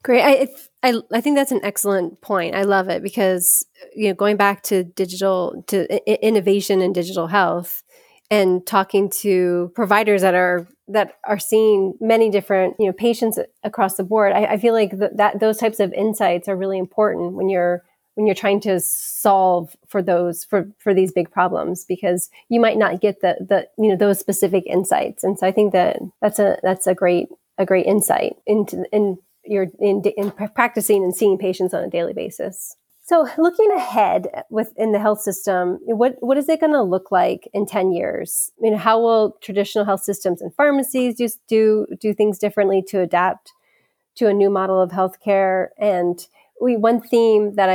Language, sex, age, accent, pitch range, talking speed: English, female, 30-49, American, 185-220 Hz, 195 wpm